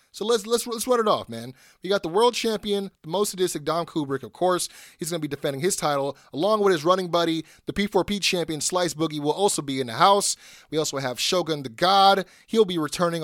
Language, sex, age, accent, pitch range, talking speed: English, male, 30-49, American, 145-180 Hz, 235 wpm